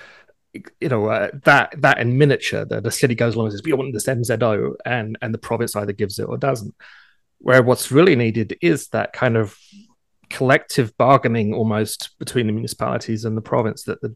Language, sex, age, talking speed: English, male, 30-49, 200 wpm